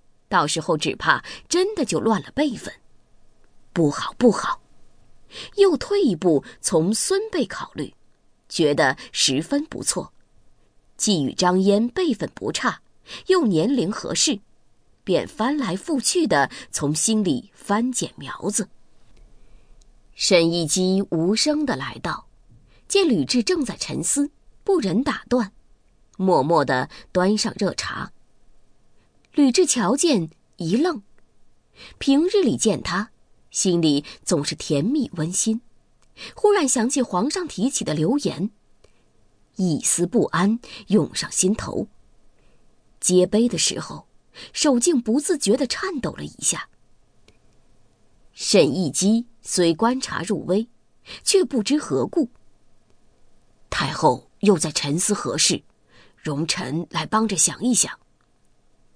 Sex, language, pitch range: female, English, 180-285 Hz